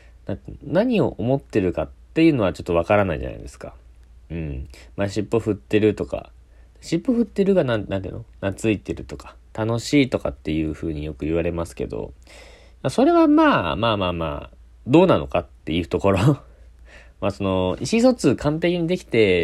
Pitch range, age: 75-115 Hz, 40-59